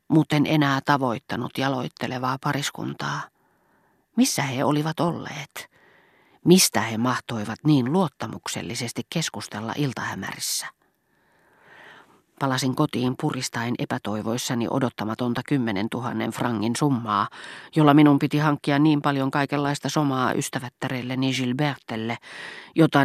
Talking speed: 100 wpm